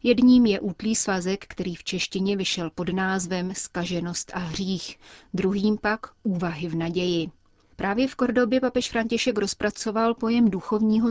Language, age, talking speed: Czech, 30-49, 140 wpm